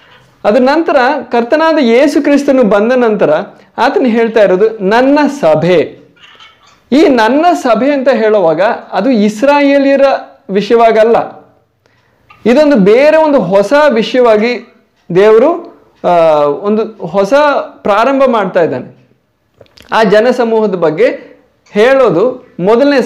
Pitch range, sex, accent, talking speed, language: 190-250 Hz, male, native, 100 wpm, Kannada